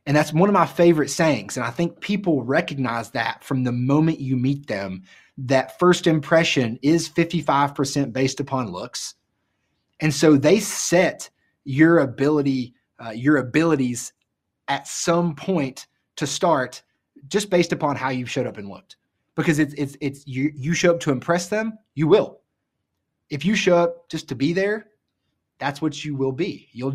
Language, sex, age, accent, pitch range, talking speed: English, male, 20-39, American, 125-155 Hz, 175 wpm